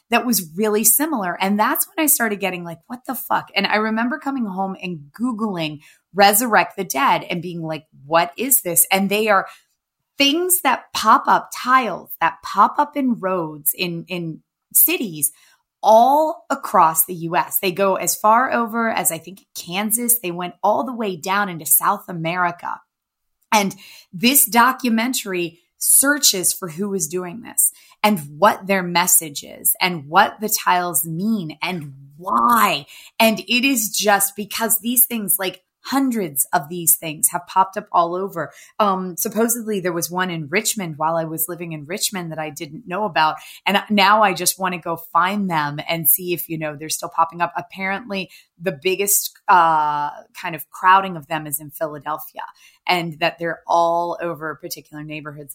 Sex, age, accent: female, 20-39, American